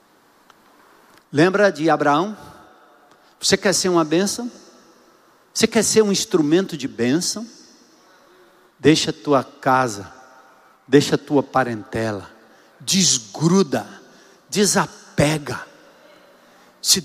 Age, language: 60-79, Portuguese